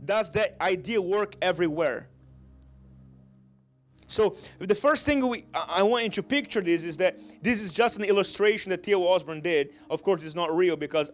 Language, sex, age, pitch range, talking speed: English, male, 30-49, 155-220 Hz, 180 wpm